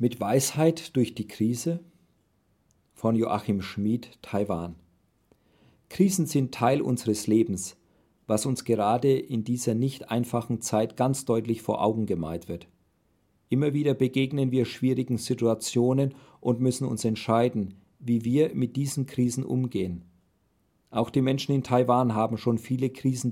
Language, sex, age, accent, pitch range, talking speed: German, male, 40-59, German, 110-135 Hz, 135 wpm